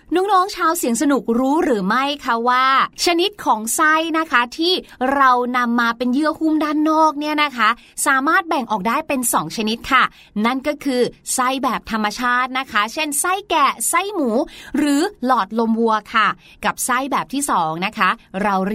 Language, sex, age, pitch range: Thai, female, 30-49, 230-310 Hz